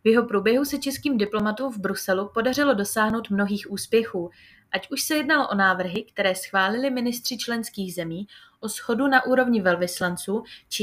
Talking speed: 160 wpm